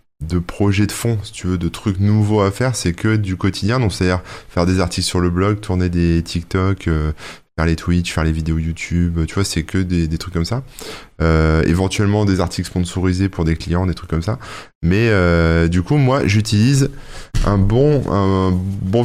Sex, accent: male, French